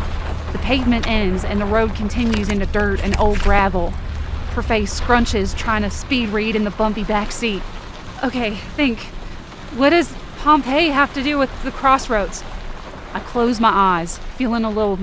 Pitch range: 210-270 Hz